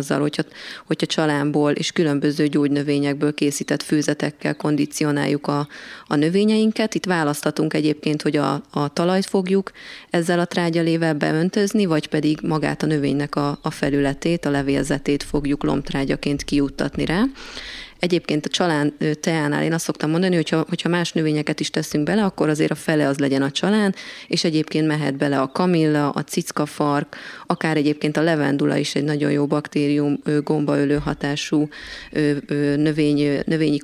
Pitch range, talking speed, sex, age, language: 145-170 Hz, 145 wpm, female, 30-49, Hungarian